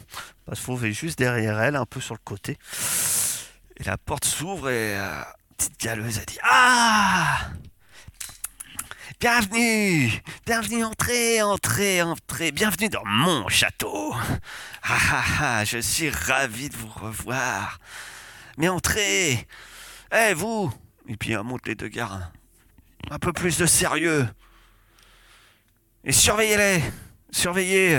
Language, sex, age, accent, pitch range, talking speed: French, male, 30-49, French, 110-180 Hz, 135 wpm